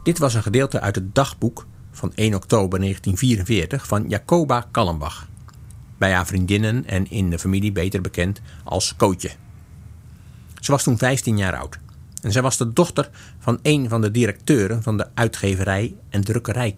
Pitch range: 95-120 Hz